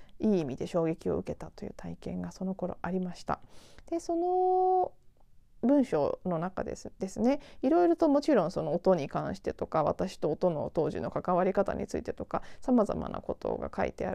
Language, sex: Japanese, female